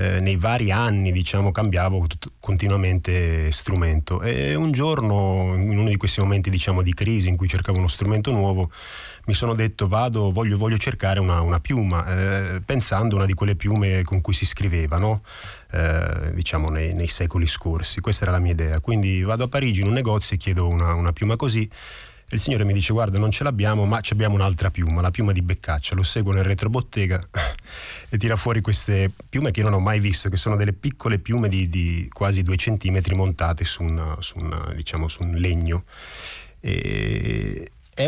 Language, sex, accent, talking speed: Italian, male, native, 195 wpm